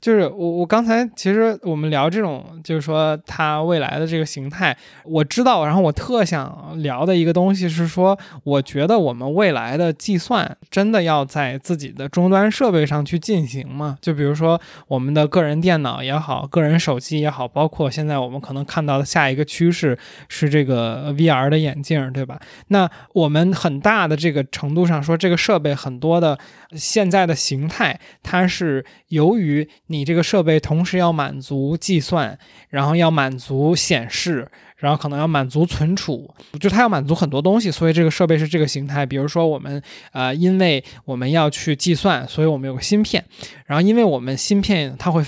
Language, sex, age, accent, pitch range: Chinese, male, 20-39, native, 145-185 Hz